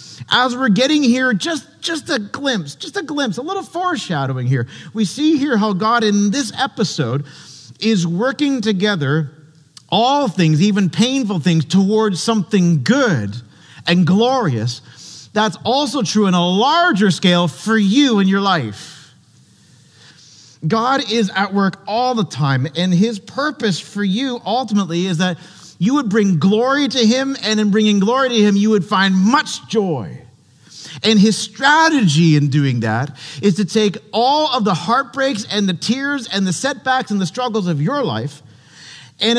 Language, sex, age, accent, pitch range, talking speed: English, male, 40-59, American, 160-245 Hz, 160 wpm